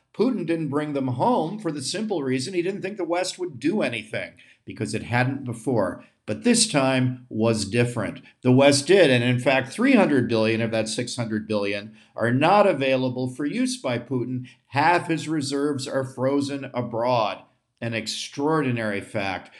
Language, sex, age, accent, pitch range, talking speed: English, male, 50-69, American, 110-135 Hz, 165 wpm